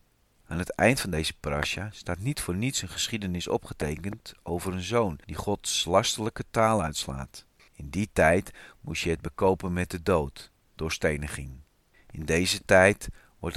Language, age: Dutch, 40-59